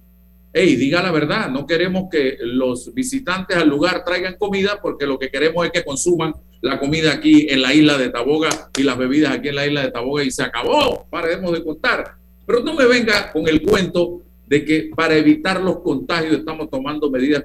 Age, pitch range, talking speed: 50-69, 140-185 Hz, 205 wpm